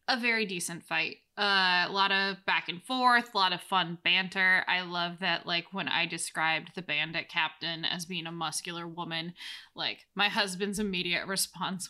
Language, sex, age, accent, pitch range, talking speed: English, female, 10-29, American, 180-235 Hz, 180 wpm